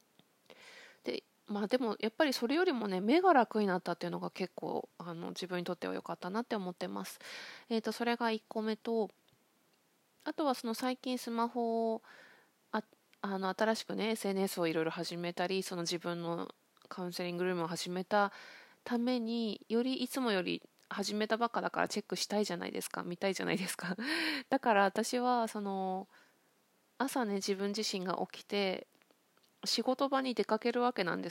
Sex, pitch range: female, 180-245 Hz